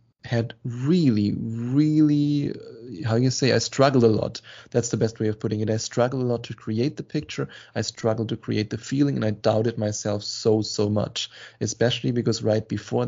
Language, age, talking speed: English, 20-39, 195 wpm